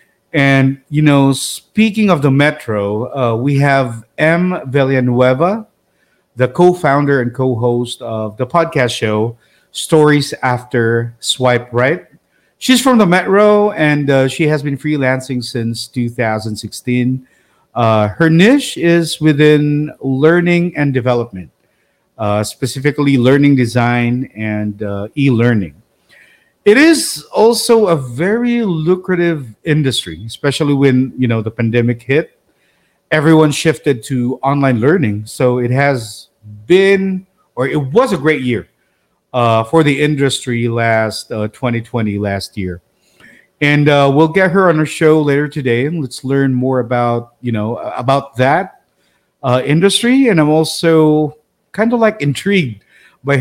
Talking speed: 135 wpm